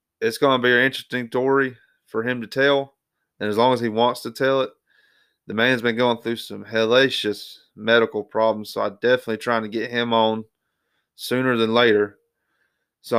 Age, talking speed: 30-49, 180 wpm